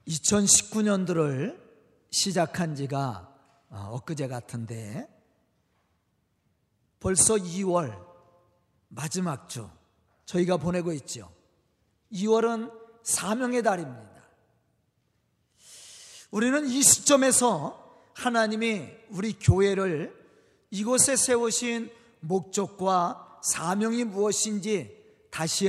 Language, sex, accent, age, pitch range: Korean, male, native, 40-59, 175-250 Hz